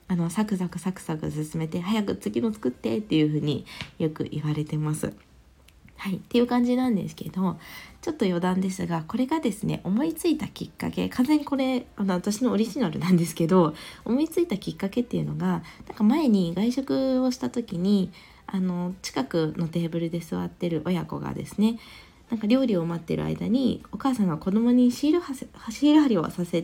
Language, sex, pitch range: Japanese, female, 170-245 Hz